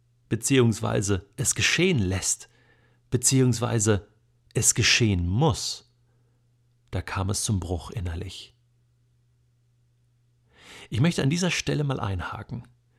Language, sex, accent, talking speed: German, male, German, 95 wpm